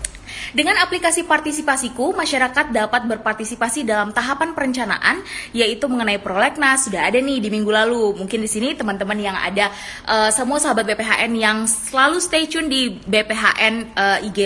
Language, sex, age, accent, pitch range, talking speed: Indonesian, female, 20-39, native, 210-280 Hz, 150 wpm